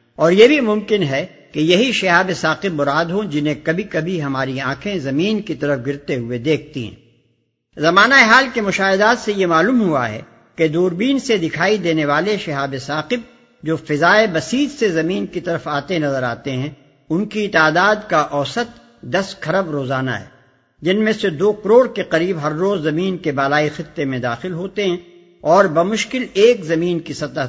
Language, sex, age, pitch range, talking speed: English, male, 60-79, 145-205 Hz, 180 wpm